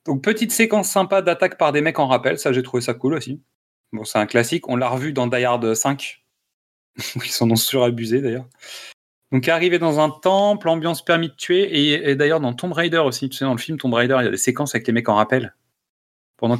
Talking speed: 240 wpm